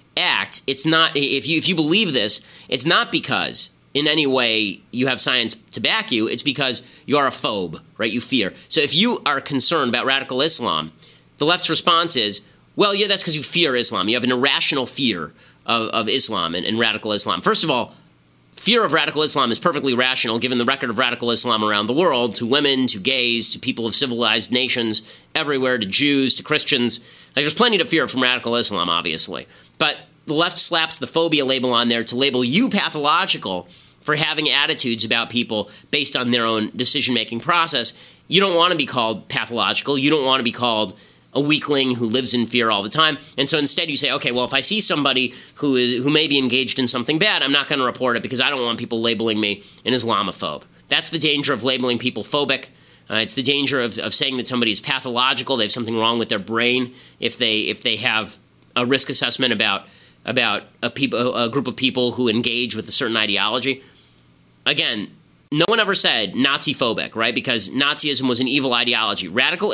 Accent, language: American, English